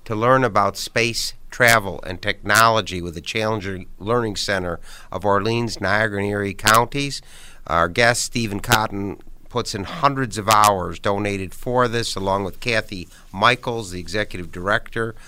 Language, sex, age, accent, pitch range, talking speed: English, male, 60-79, American, 100-125 Hz, 145 wpm